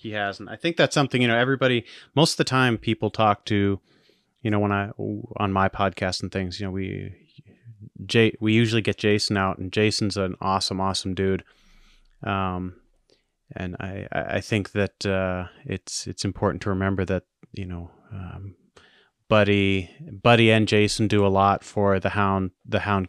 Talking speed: 175 wpm